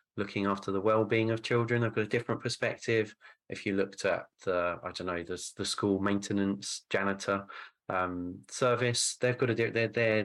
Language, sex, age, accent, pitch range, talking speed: English, male, 30-49, British, 100-115 Hz, 185 wpm